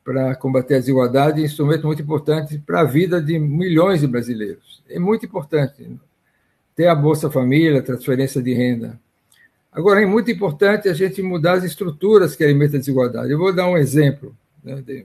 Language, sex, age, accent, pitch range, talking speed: Portuguese, male, 60-79, Brazilian, 135-175 Hz, 185 wpm